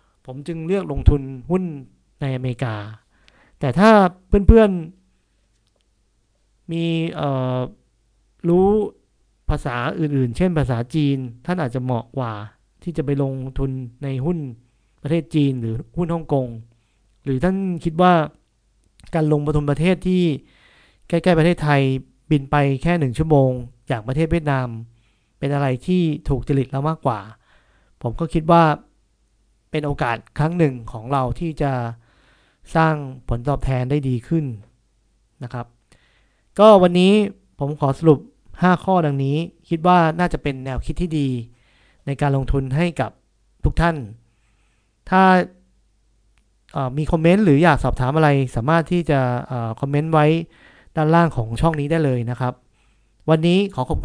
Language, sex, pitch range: Thai, male, 120-165 Hz